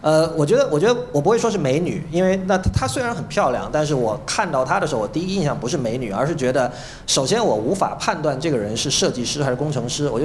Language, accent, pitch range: Chinese, native, 120-160 Hz